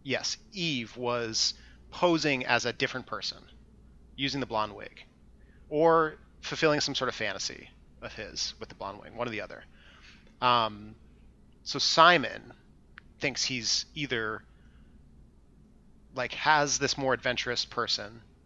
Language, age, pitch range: English, 30-49, 85-135 Hz